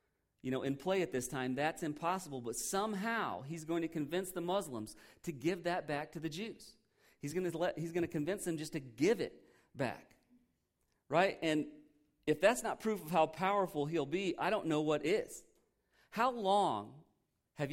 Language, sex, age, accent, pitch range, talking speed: English, male, 40-59, American, 140-185 Hz, 195 wpm